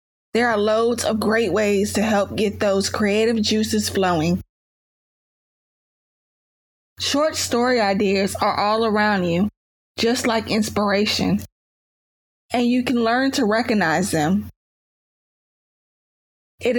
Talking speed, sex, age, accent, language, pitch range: 110 wpm, female, 20-39, American, English, 200-245 Hz